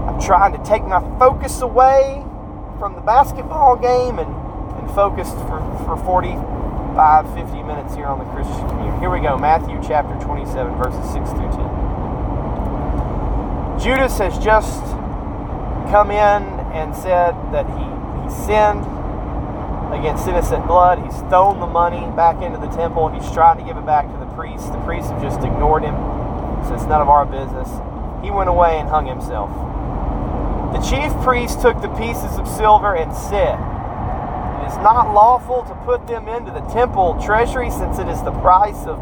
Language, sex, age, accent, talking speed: English, male, 30-49, American, 170 wpm